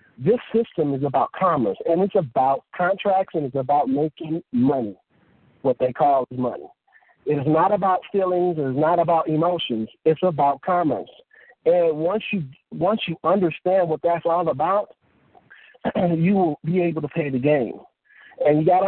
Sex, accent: male, American